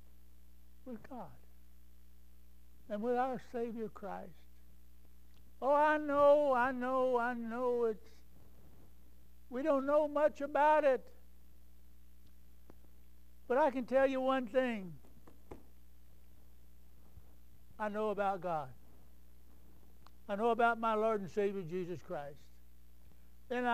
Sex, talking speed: male, 105 wpm